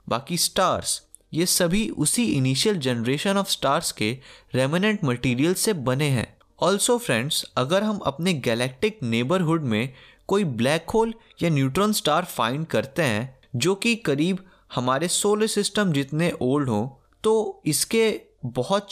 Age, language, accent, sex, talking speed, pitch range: 20-39, Hindi, native, male, 140 wpm, 125-190 Hz